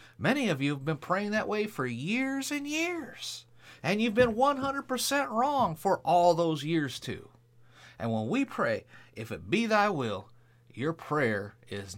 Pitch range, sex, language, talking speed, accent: 110-155 Hz, male, English, 170 wpm, American